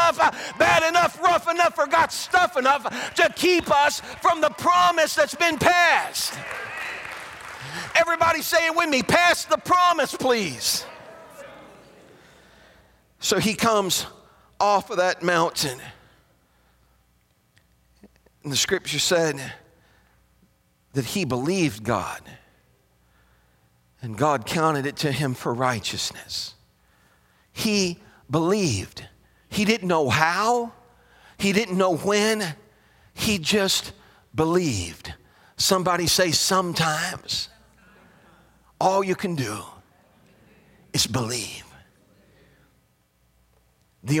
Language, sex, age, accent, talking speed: English, male, 40-59, American, 100 wpm